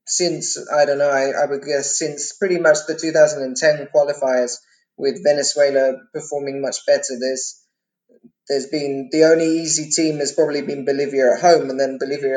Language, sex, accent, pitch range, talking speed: English, male, British, 145-170 Hz, 170 wpm